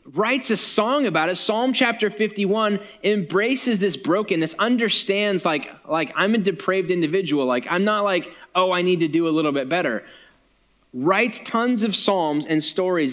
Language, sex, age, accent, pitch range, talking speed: English, male, 20-39, American, 155-200 Hz, 170 wpm